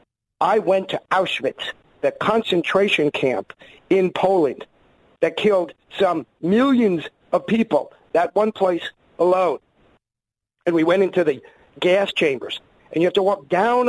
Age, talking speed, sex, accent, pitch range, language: 50-69, 140 wpm, male, American, 175-250 Hz, English